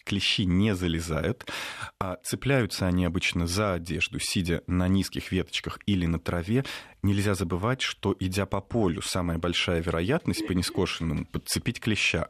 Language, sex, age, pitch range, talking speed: Russian, male, 30-49, 90-110 Hz, 135 wpm